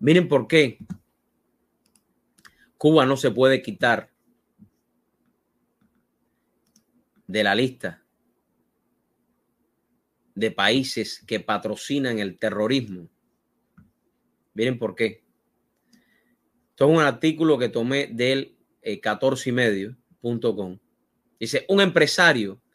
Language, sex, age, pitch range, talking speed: English, male, 30-49, 130-180 Hz, 80 wpm